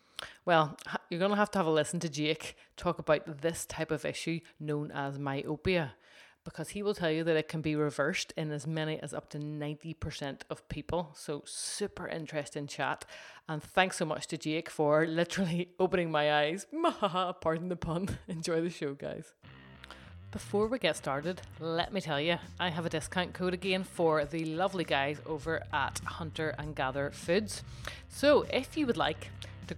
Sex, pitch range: female, 150-185 Hz